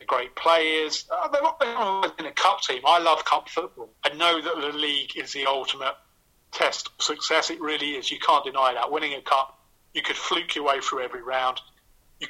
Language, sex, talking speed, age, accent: English, male, 200 wpm, 30-49, British